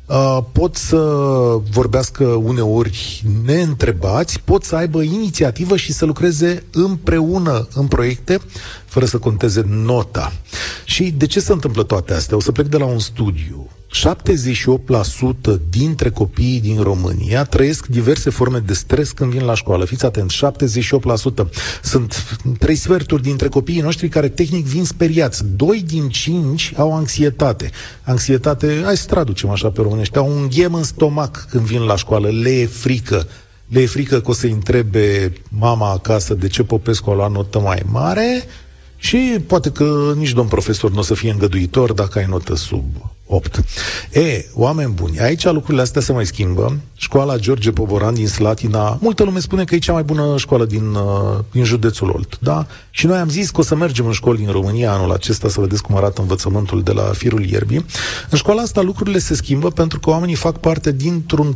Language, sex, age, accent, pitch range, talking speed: Romanian, male, 40-59, native, 105-150 Hz, 175 wpm